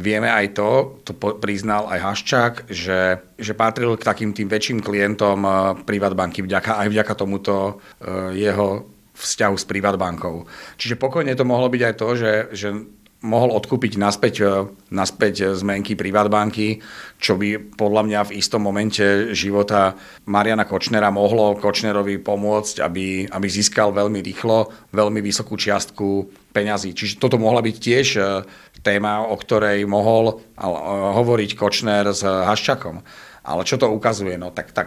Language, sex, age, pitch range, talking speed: Slovak, male, 40-59, 100-115 Hz, 145 wpm